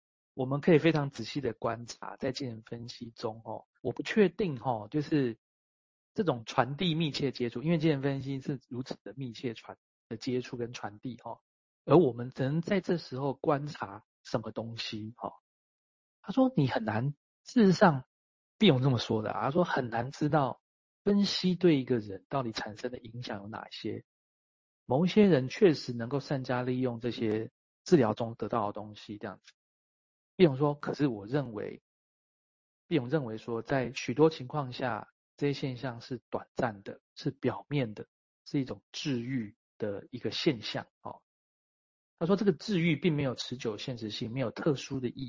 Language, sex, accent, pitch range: Chinese, male, native, 115-150 Hz